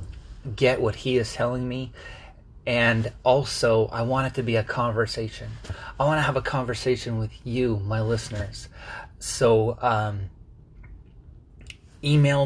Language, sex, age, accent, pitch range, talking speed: English, male, 30-49, American, 105-130 Hz, 135 wpm